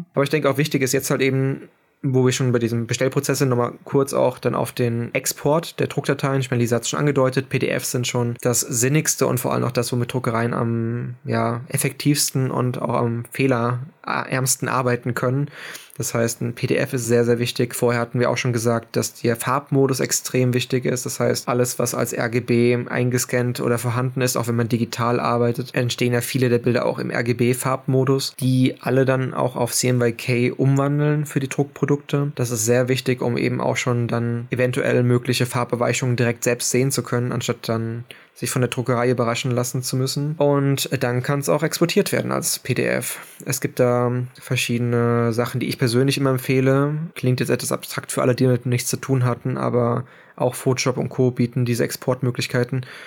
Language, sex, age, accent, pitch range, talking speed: German, male, 20-39, German, 120-135 Hz, 195 wpm